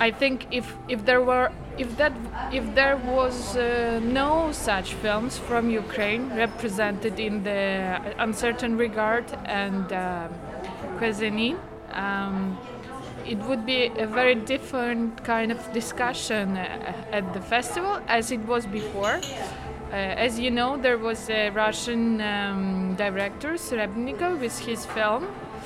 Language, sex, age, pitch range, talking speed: French, female, 20-39, 210-245 Hz, 130 wpm